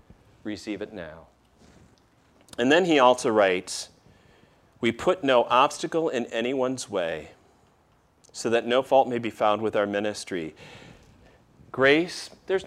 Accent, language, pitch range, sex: American, English, 115-160 Hz, male